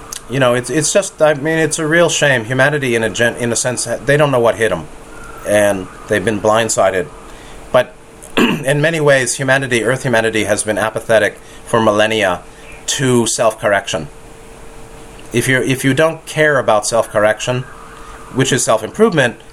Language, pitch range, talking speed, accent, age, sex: English, 110-150 Hz, 165 wpm, American, 30-49, male